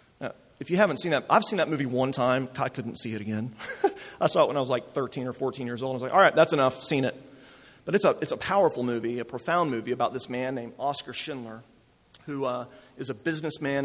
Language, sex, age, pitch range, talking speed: English, male, 40-59, 120-145 Hz, 250 wpm